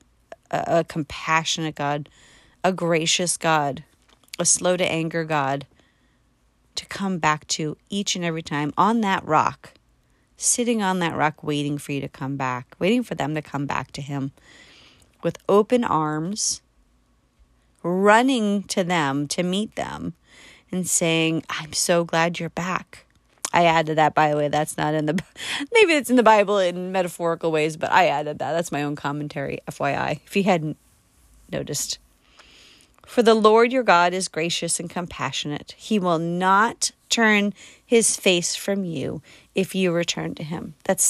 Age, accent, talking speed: 30-49, American, 160 wpm